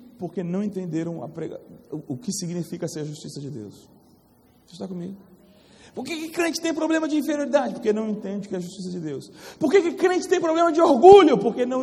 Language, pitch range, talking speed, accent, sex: Portuguese, 160-245 Hz, 220 wpm, Brazilian, male